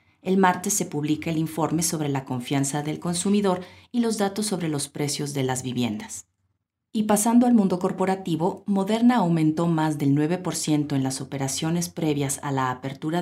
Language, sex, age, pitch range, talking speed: Spanish, female, 40-59, 145-185 Hz, 170 wpm